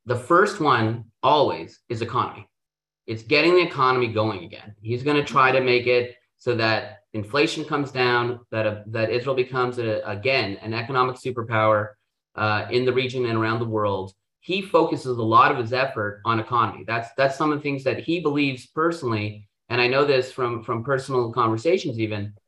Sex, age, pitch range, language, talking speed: male, 30-49, 110-140 Hz, English, 185 wpm